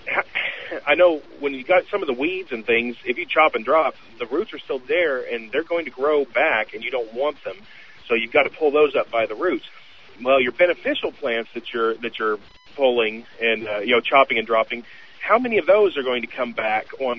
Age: 40-59